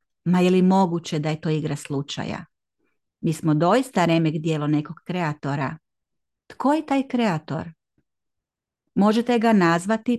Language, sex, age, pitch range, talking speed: Croatian, female, 40-59, 165-215 Hz, 135 wpm